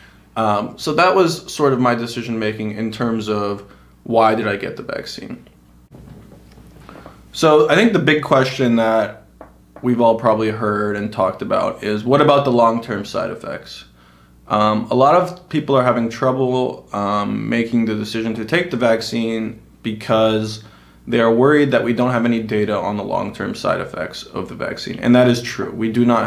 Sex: male